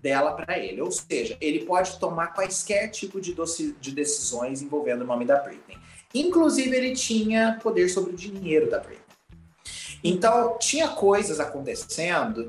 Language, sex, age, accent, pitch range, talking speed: Portuguese, male, 30-49, Brazilian, 125-200 Hz, 155 wpm